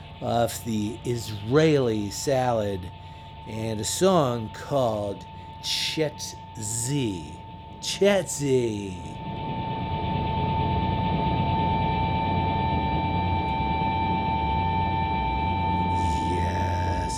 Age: 50-69